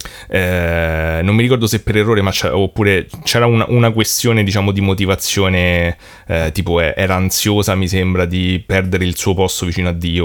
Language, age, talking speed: Italian, 30-49, 180 wpm